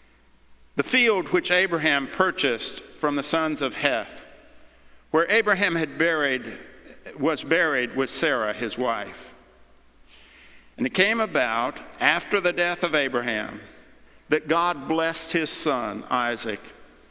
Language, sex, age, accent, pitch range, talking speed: English, male, 50-69, American, 125-170 Hz, 115 wpm